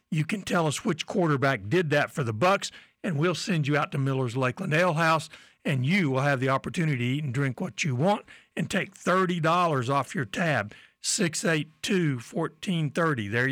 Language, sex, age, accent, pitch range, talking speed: English, male, 60-79, American, 135-170 Hz, 185 wpm